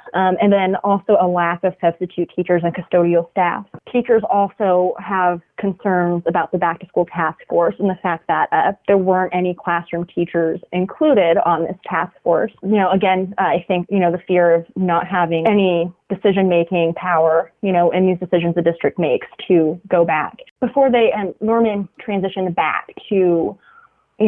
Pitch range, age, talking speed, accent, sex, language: 170-195 Hz, 20-39, 185 wpm, American, female, English